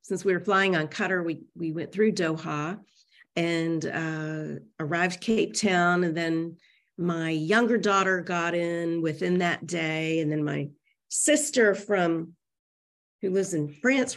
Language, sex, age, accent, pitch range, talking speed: English, female, 40-59, American, 150-190 Hz, 150 wpm